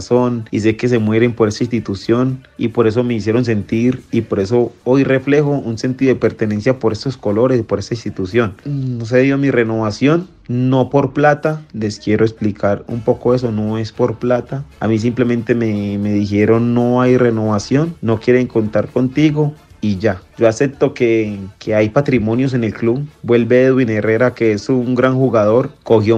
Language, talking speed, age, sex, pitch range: Spanish, 185 wpm, 30-49, male, 110-125 Hz